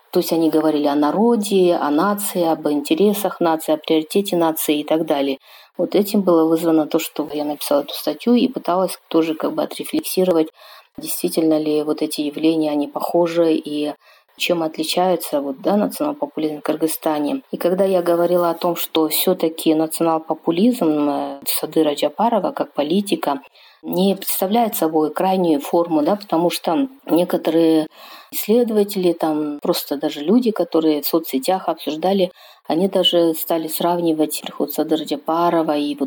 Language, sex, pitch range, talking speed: Russian, female, 155-185 Hz, 145 wpm